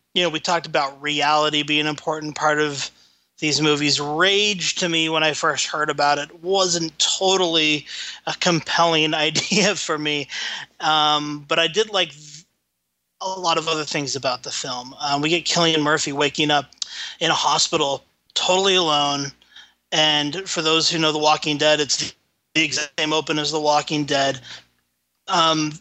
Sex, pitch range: male, 145-165 Hz